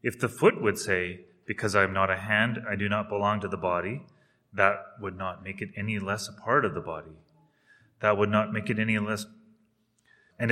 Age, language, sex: 30-49, English, male